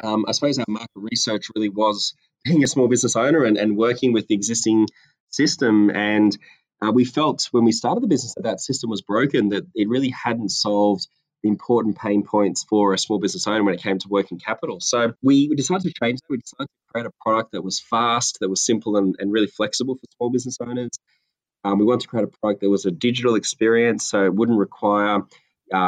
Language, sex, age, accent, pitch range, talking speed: English, male, 20-39, Australian, 100-120 Hz, 225 wpm